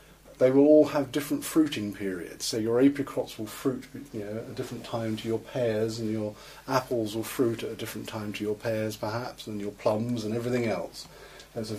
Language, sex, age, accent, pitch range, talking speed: English, male, 40-59, British, 105-125 Hz, 215 wpm